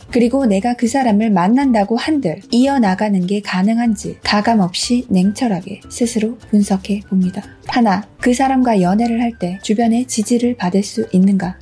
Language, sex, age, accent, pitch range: Korean, female, 20-39, native, 195-245 Hz